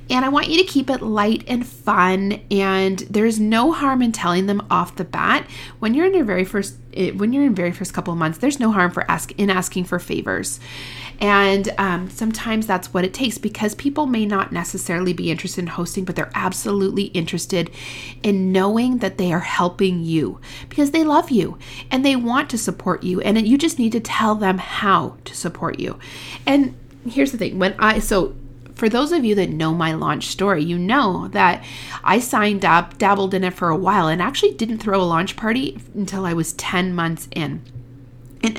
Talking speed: 205 wpm